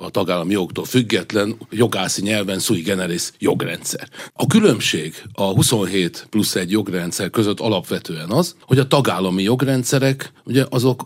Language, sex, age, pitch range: Hungarian, male, 40-59, 100-135 Hz